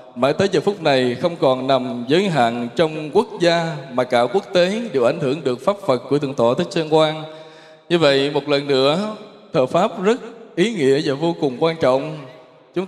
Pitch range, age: 130-180 Hz, 20-39